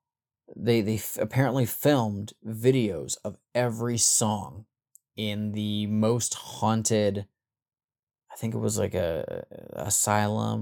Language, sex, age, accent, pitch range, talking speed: English, male, 20-39, American, 105-115 Hz, 120 wpm